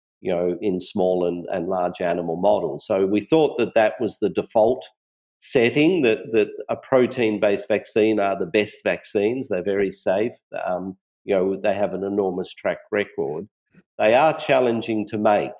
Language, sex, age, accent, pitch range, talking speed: English, male, 50-69, Australian, 95-115 Hz, 170 wpm